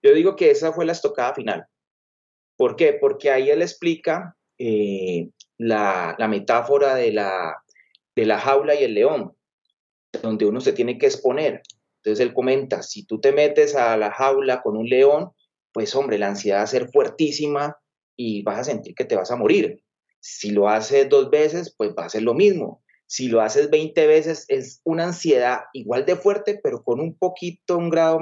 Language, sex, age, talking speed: Spanish, male, 30-49, 190 wpm